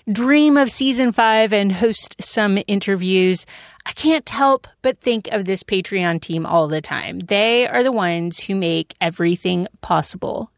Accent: American